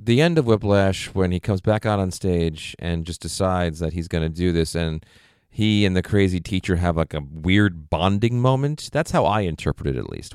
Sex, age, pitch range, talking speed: male, 40-59, 80-105 Hz, 225 wpm